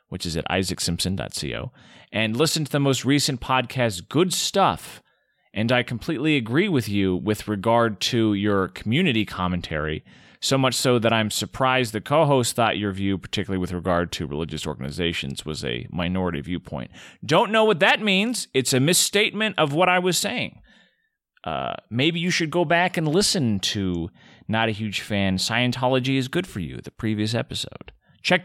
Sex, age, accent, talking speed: male, 30-49, American, 175 wpm